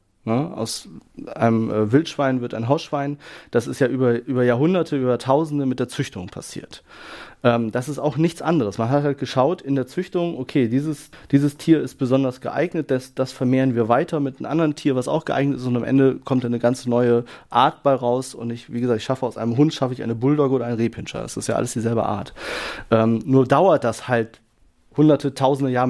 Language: German